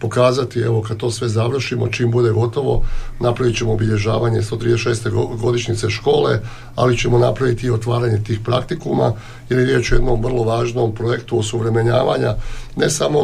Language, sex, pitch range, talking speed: Croatian, male, 115-130 Hz, 150 wpm